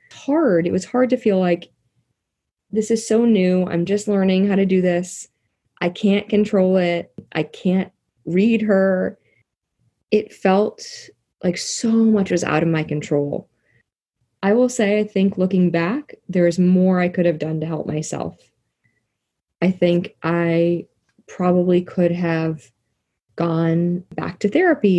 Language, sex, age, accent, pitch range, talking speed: English, female, 20-39, American, 155-200 Hz, 155 wpm